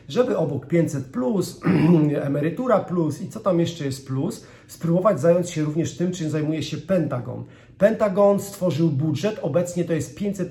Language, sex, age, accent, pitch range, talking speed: Polish, male, 40-59, native, 140-170 Hz, 160 wpm